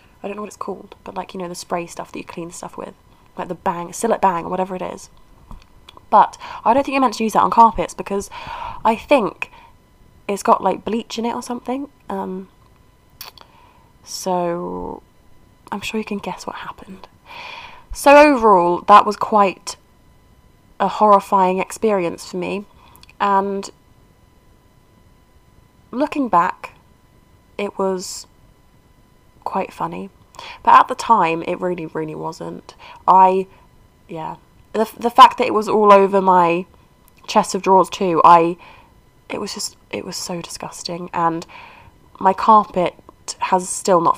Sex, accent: female, British